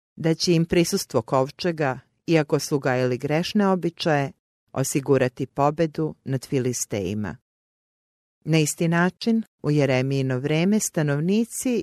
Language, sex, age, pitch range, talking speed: English, female, 40-59, 130-170 Hz, 100 wpm